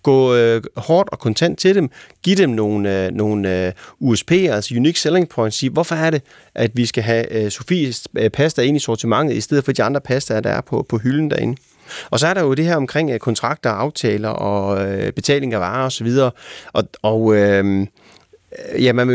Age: 30-49